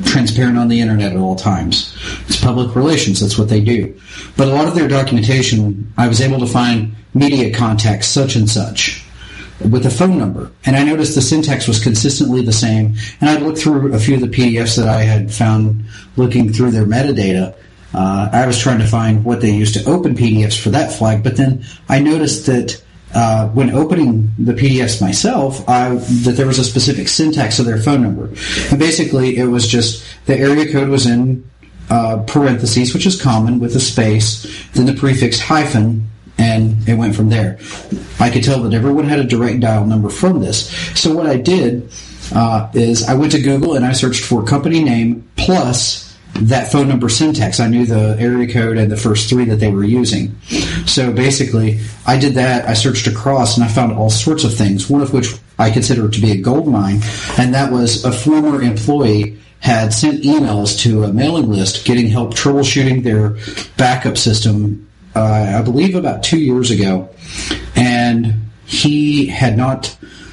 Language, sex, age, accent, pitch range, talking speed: English, male, 40-59, American, 110-130 Hz, 190 wpm